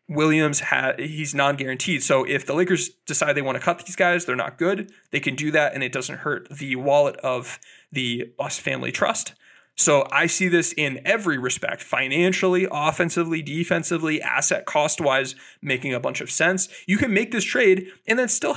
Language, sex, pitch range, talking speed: English, male, 140-175 Hz, 185 wpm